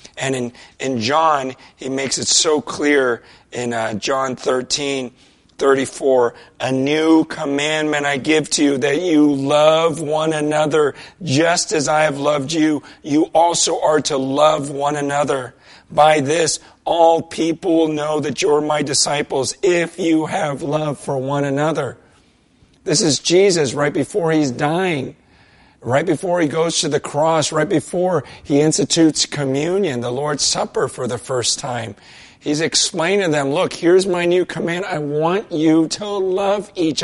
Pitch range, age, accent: 145-180 Hz, 40-59, American